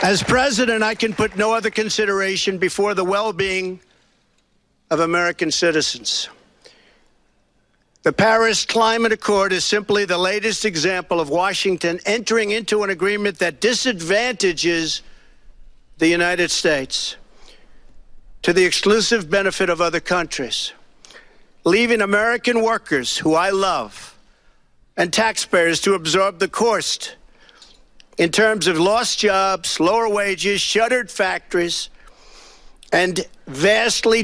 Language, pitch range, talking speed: English, 170-210 Hz, 110 wpm